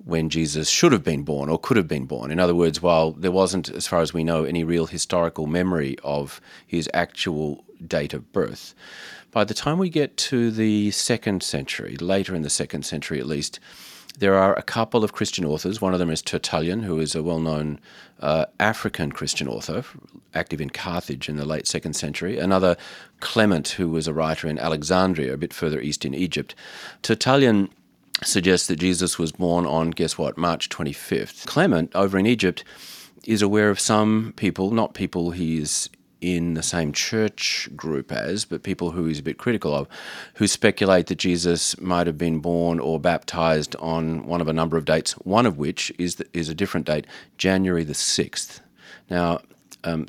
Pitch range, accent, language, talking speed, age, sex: 80-95 Hz, Australian, English, 190 wpm, 40-59, male